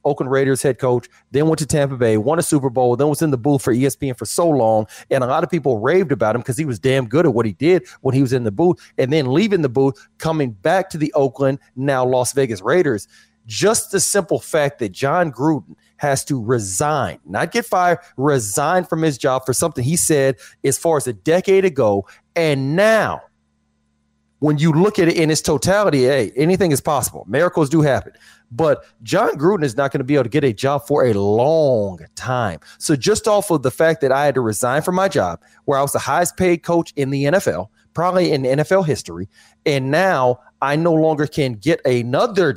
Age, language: 40-59, English